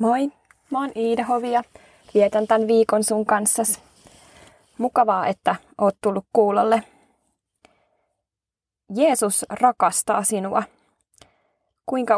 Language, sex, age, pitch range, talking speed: Finnish, female, 20-39, 190-230 Hz, 95 wpm